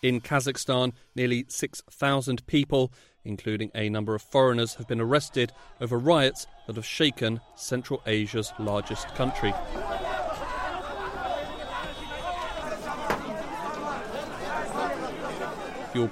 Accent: British